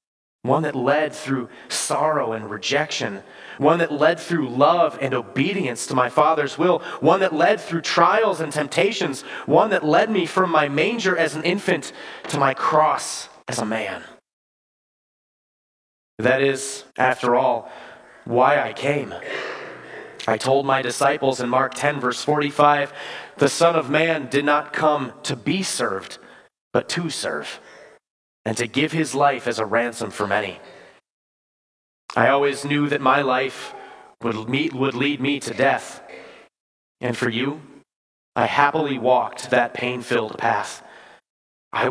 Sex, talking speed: male, 145 wpm